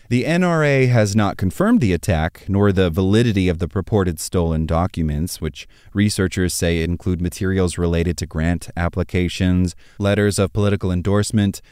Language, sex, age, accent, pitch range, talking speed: English, male, 30-49, American, 85-110 Hz, 145 wpm